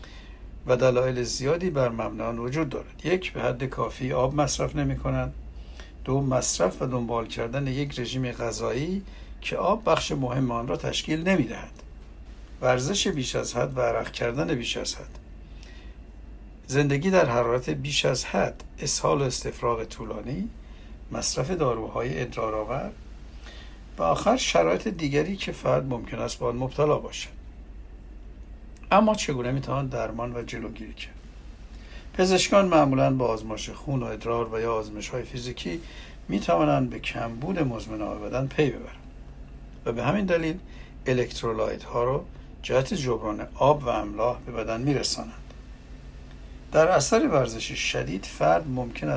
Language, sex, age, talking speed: Persian, male, 60-79, 140 wpm